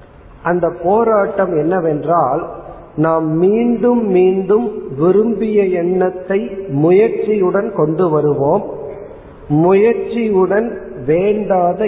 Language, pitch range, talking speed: Tamil, 150-195 Hz, 65 wpm